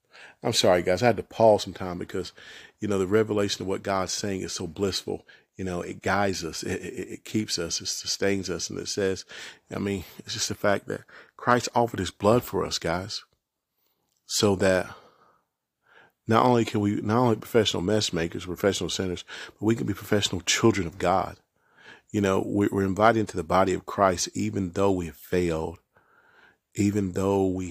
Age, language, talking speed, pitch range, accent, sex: 40-59, English, 195 wpm, 90-105 Hz, American, male